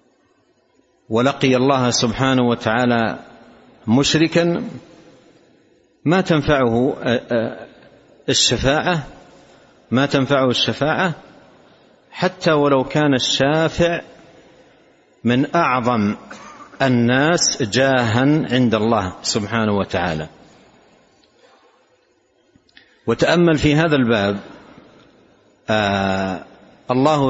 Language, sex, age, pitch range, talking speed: Arabic, male, 60-79, 110-140 Hz, 60 wpm